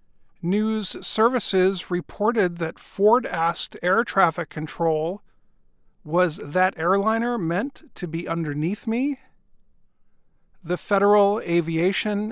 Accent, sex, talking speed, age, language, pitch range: American, male, 95 wpm, 50-69, English, 165-210 Hz